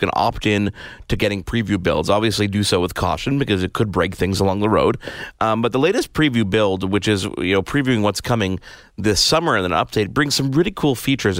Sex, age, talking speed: male, 30-49, 225 wpm